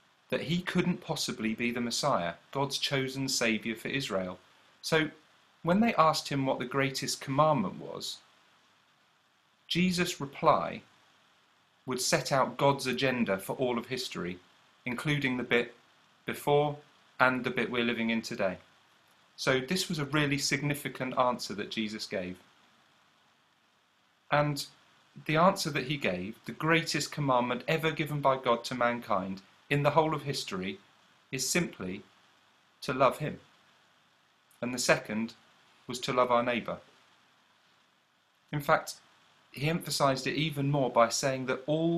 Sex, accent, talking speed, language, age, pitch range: male, British, 140 wpm, English, 40-59, 125-150 Hz